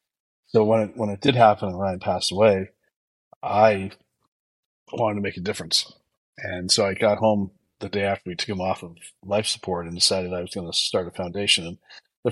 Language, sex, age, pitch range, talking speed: English, male, 30-49, 100-120 Hz, 210 wpm